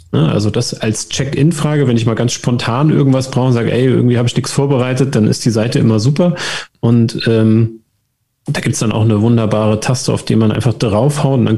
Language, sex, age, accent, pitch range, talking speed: German, male, 30-49, German, 110-135 Hz, 220 wpm